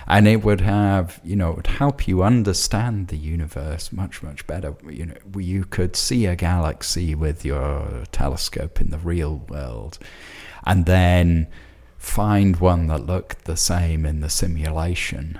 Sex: male